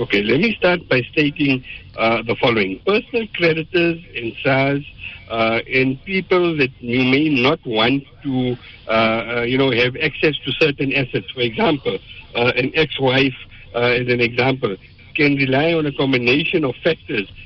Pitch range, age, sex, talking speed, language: 120-150 Hz, 60-79, male, 155 wpm, English